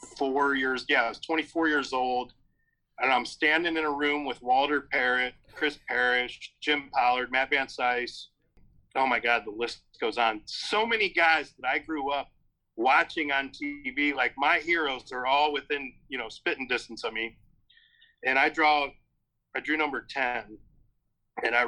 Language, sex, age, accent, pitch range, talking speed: English, male, 40-59, American, 120-145 Hz, 170 wpm